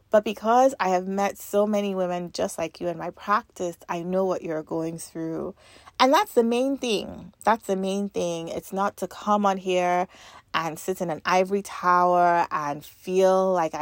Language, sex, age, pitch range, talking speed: English, female, 30-49, 170-205 Hz, 190 wpm